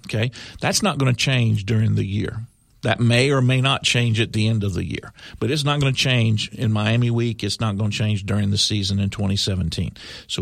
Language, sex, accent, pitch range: English, male, American, 110-140 Hz